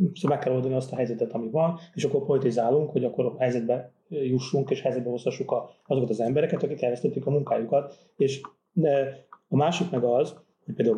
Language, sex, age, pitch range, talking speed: Hungarian, male, 30-49, 120-165 Hz, 190 wpm